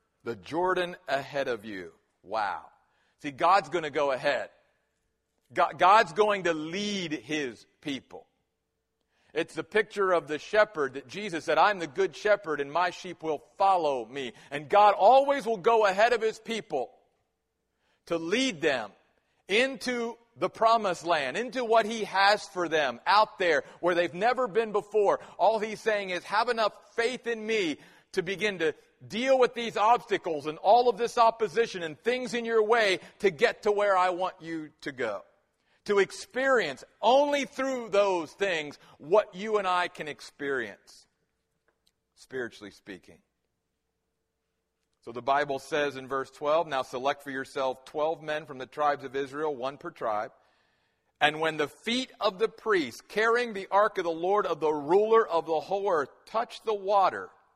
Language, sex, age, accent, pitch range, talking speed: English, male, 40-59, American, 155-225 Hz, 165 wpm